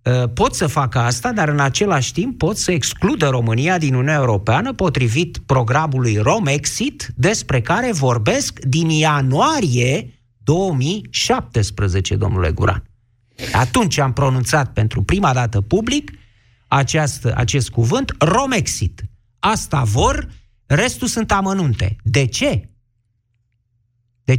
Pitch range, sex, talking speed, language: 115-155 Hz, male, 110 wpm, Romanian